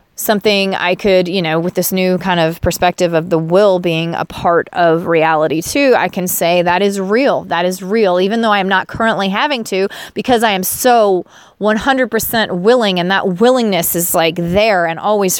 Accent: American